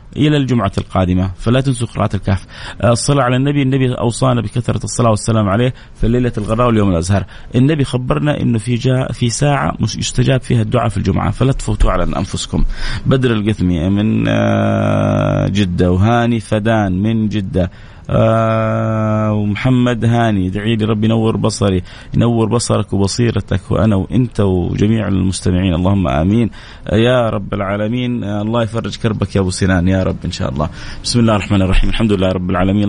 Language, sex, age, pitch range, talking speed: Arabic, male, 30-49, 100-120 Hz, 150 wpm